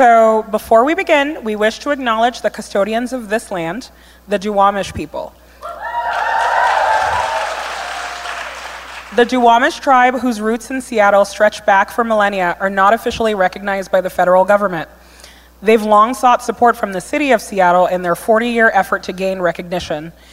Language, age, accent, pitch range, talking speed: English, 20-39, American, 180-220 Hz, 150 wpm